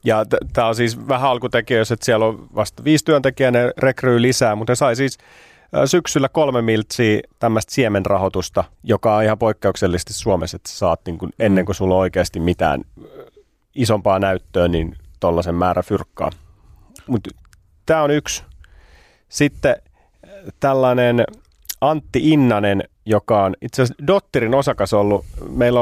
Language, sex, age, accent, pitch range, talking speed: Finnish, male, 30-49, native, 95-125 Hz, 130 wpm